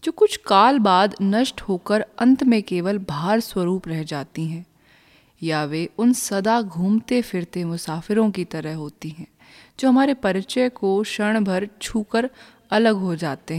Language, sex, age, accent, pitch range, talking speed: Hindi, female, 20-39, native, 170-225 Hz, 155 wpm